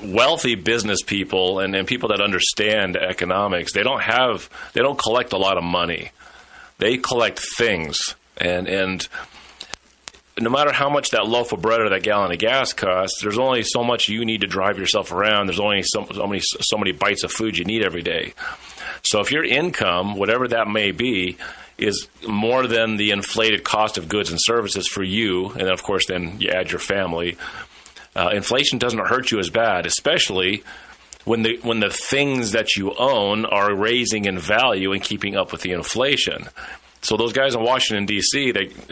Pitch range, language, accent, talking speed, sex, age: 95-115 Hz, English, American, 190 wpm, male, 40-59